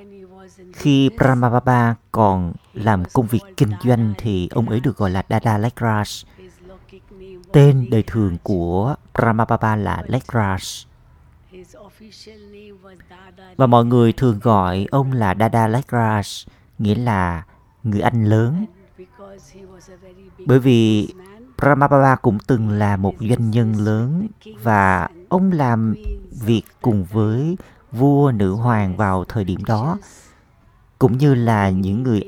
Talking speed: 120 wpm